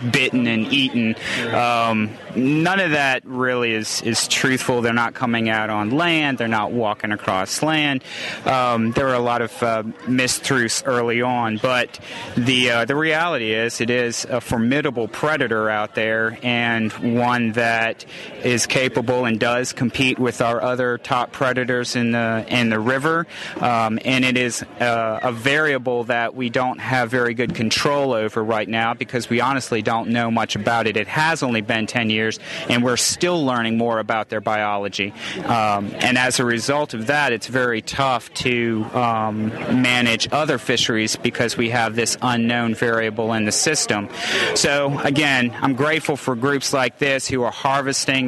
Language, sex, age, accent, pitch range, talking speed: English, male, 30-49, American, 115-130 Hz, 170 wpm